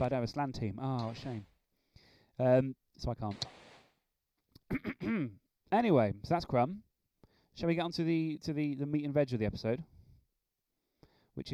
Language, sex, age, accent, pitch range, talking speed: English, male, 20-39, British, 115-140 Hz, 165 wpm